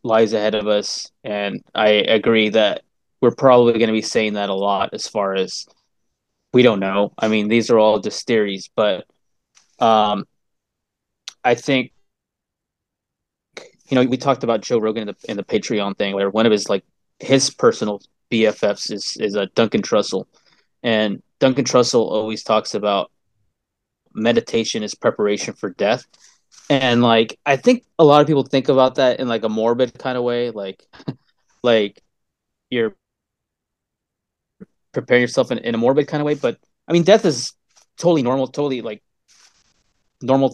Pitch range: 105-135 Hz